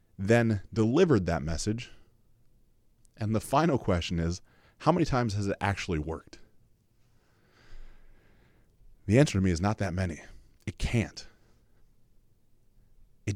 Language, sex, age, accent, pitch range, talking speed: English, male, 30-49, American, 100-125 Hz, 120 wpm